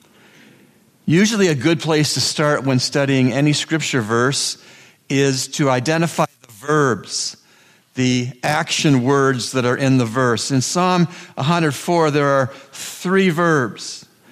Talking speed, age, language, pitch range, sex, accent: 130 wpm, 50-69, English, 135-170 Hz, male, American